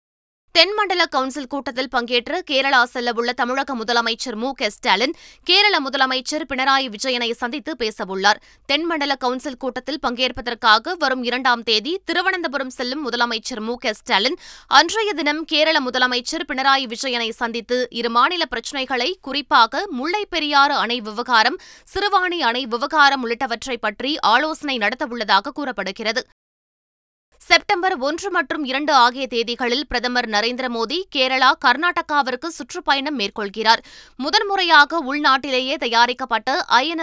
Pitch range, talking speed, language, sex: 235-300 Hz, 115 wpm, Tamil, female